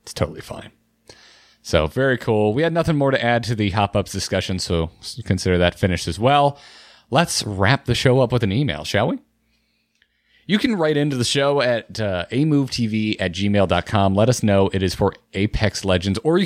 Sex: male